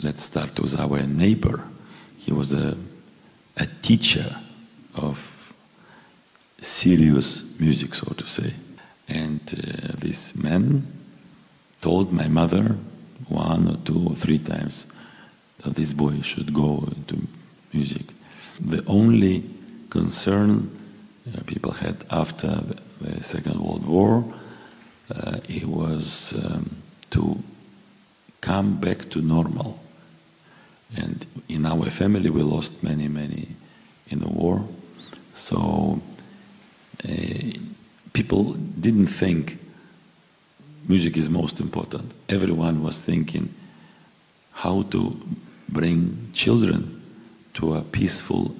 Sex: male